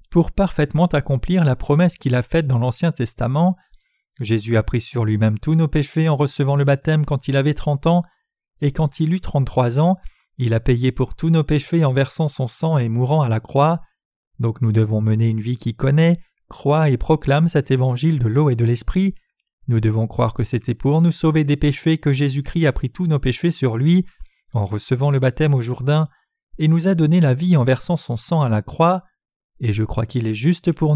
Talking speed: 220 wpm